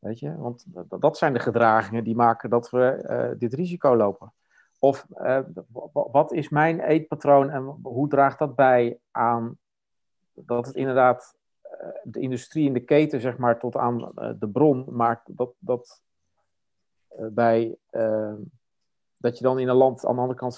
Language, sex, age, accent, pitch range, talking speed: Dutch, male, 50-69, Dutch, 110-135 Hz, 180 wpm